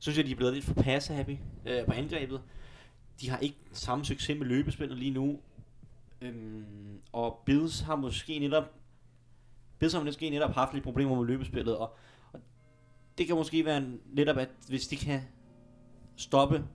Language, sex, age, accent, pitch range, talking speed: Danish, male, 30-49, native, 115-135 Hz, 175 wpm